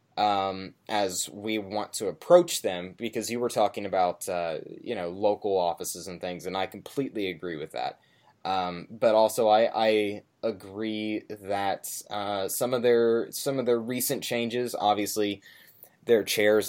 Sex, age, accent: male, 10-29, American